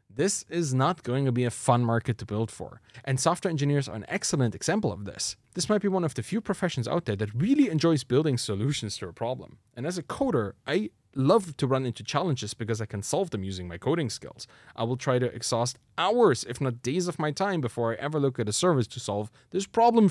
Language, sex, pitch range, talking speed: English, male, 115-165 Hz, 240 wpm